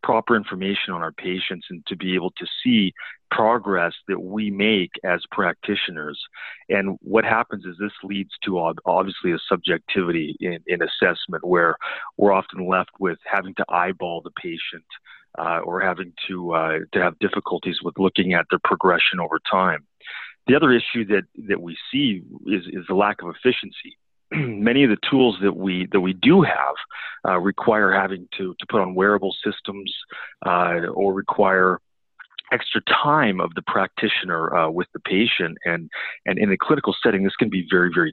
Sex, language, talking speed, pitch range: male, English, 175 wpm, 90-100 Hz